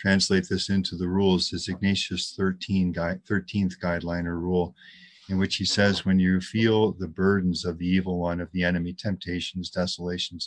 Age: 40-59